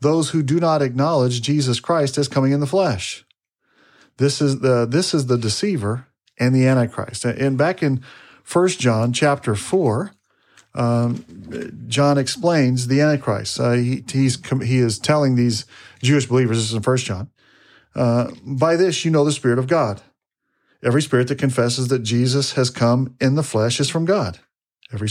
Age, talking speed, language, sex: 40-59, 170 wpm, English, male